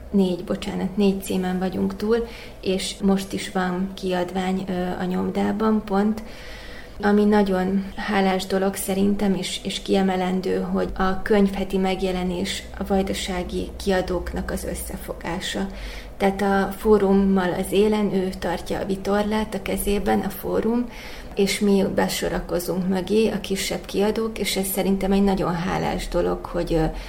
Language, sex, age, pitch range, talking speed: Hungarian, female, 30-49, 185-200 Hz, 130 wpm